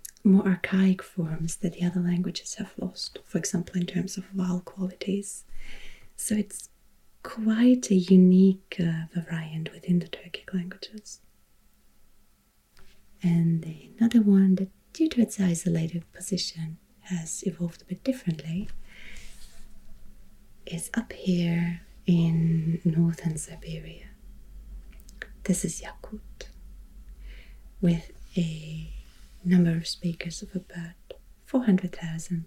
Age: 30-49